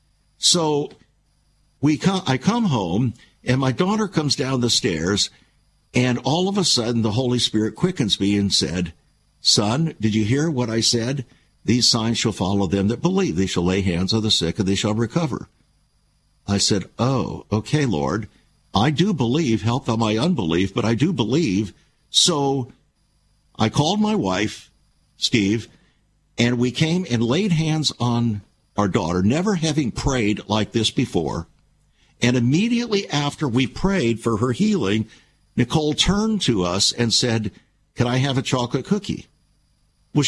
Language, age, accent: English, 60-79, American